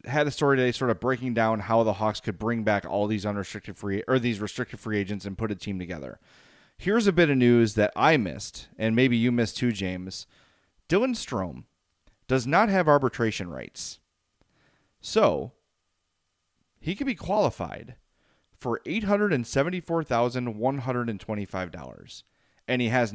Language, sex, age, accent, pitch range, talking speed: English, male, 30-49, American, 105-140 Hz, 155 wpm